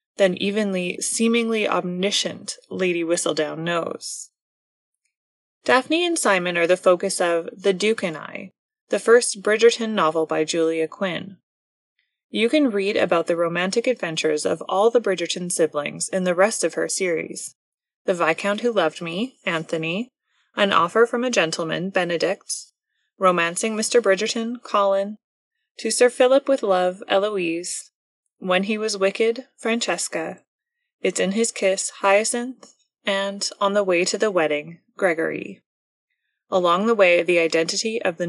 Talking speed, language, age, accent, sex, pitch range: 140 wpm, English, 20-39, American, female, 175-230 Hz